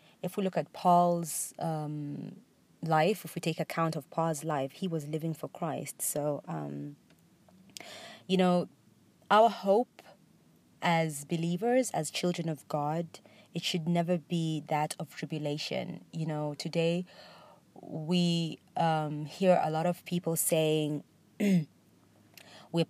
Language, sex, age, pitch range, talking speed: English, female, 20-39, 145-175 Hz, 130 wpm